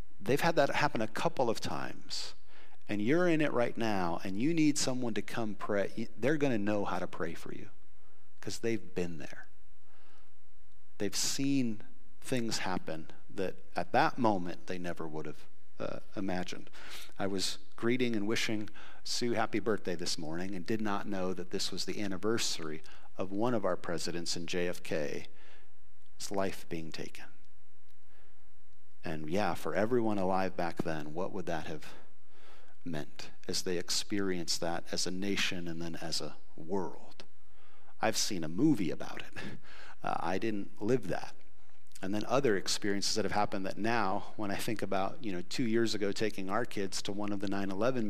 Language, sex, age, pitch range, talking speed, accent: English, male, 50-69, 90-105 Hz, 170 wpm, American